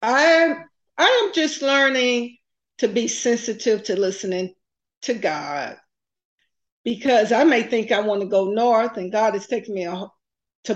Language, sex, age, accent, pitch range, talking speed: English, female, 50-69, American, 190-245 Hz, 150 wpm